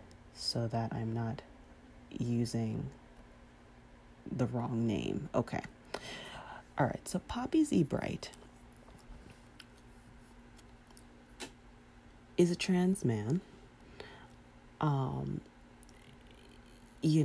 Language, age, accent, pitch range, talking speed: English, 40-59, American, 110-135 Hz, 75 wpm